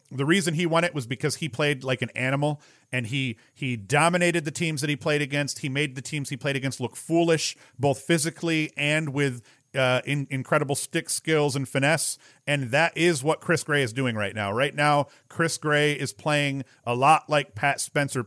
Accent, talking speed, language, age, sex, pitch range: American, 205 wpm, English, 40-59, male, 130-160 Hz